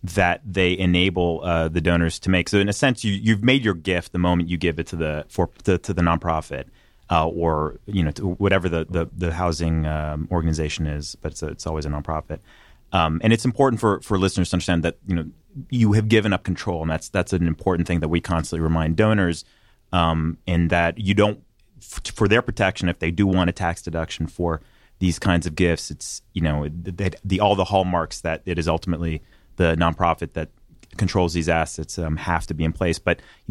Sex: male